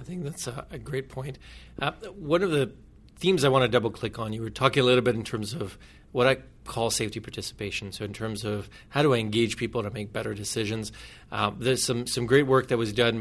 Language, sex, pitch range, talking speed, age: English, male, 115-135 Hz, 240 wpm, 30-49